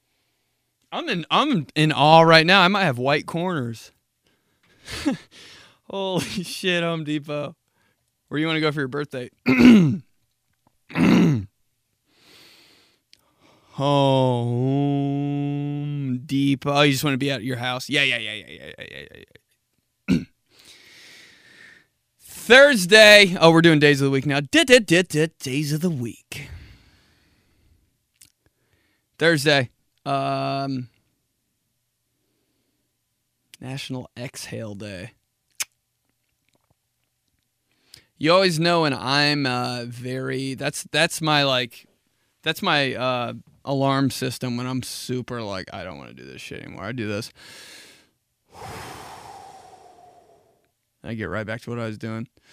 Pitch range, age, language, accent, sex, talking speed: 120-160 Hz, 20-39, English, American, male, 120 wpm